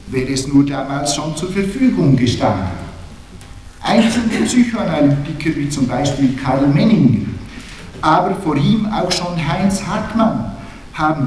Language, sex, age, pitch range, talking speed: German, male, 60-79, 145-190 Hz, 120 wpm